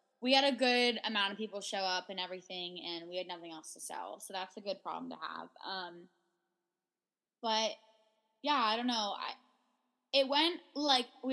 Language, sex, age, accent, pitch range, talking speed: English, female, 10-29, American, 180-230 Hz, 190 wpm